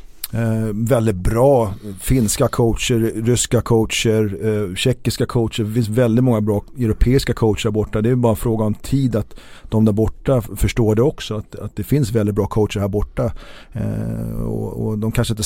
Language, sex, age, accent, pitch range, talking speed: Swedish, male, 40-59, native, 110-125 Hz, 185 wpm